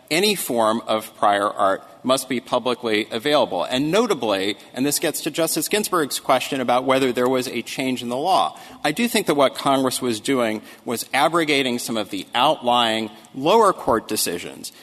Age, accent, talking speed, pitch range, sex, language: 40-59, American, 180 wpm, 115-165 Hz, male, English